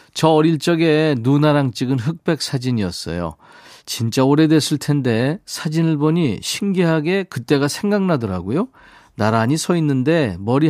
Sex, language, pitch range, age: male, Korean, 115-160 Hz, 40-59